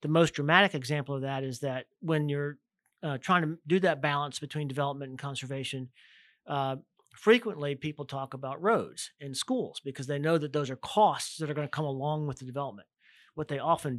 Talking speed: 200 wpm